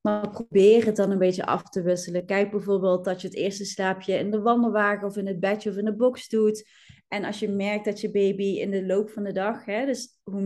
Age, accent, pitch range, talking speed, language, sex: 20-39, Dutch, 185-215 Hz, 250 wpm, Dutch, female